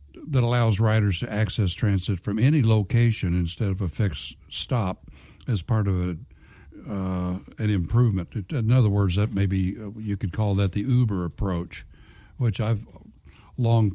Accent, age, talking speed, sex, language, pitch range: American, 60-79, 155 wpm, male, English, 90-115 Hz